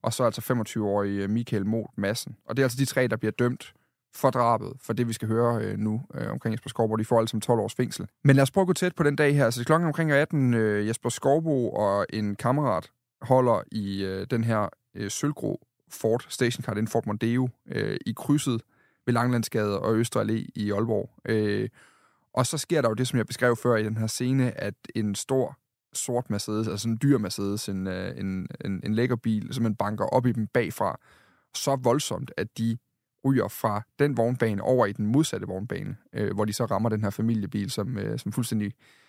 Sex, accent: male, native